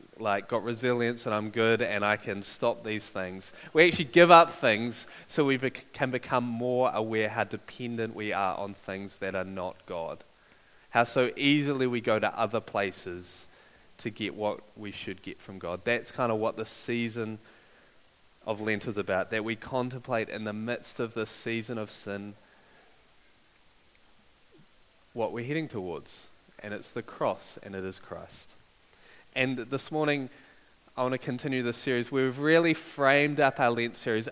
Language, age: English, 20-39